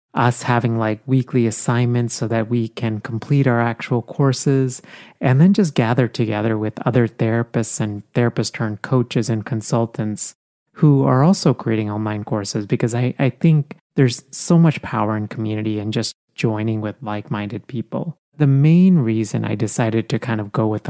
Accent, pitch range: American, 110-135 Hz